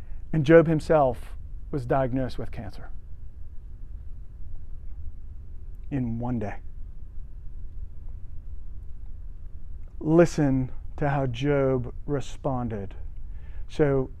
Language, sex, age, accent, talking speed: English, male, 40-59, American, 70 wpm